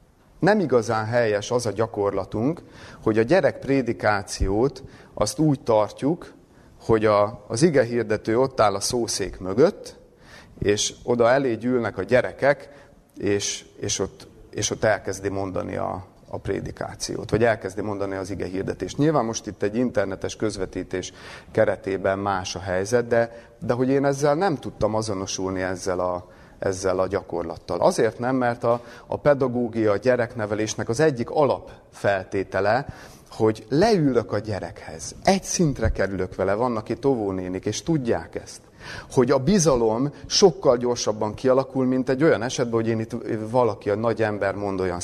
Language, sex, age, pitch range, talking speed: Hungarian, male, 30-49, 100-125 Hz, 150 wpm